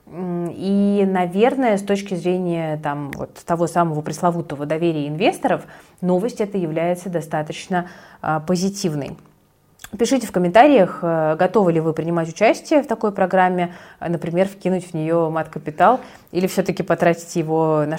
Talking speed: 120 wpm